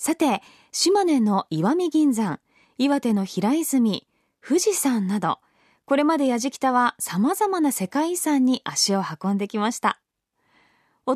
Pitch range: 215-315 Hz